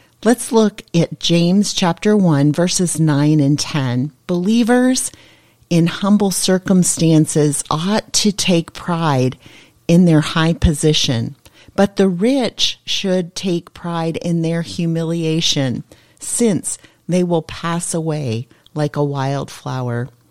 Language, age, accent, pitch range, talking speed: English, 40-59, American, 150-185 Hz, 115 wpm